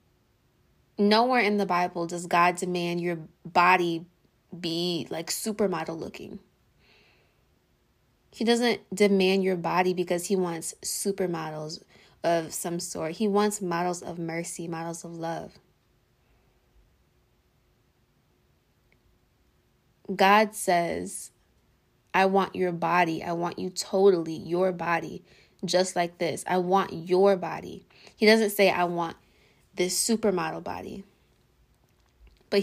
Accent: American